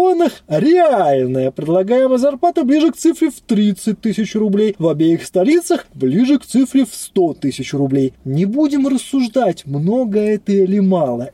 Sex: male